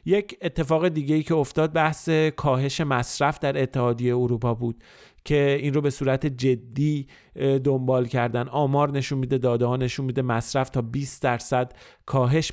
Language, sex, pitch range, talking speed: Persian, male, 120-145 Hz, 160 wpm